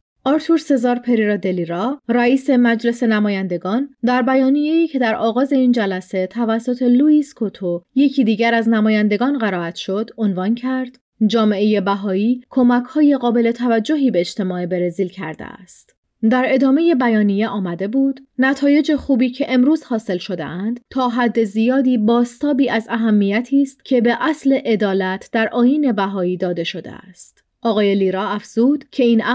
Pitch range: 200-250 Hz